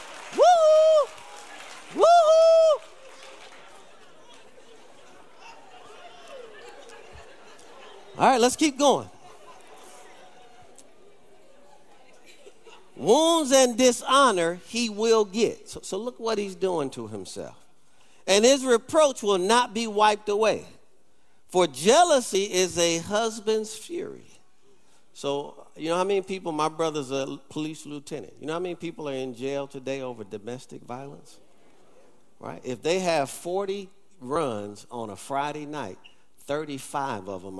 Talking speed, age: 115 wpm, 50-69